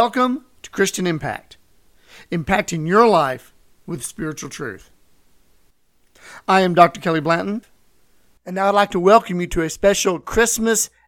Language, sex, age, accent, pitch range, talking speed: English, male, 50-69, American, 160-200 Hz, 140 wpm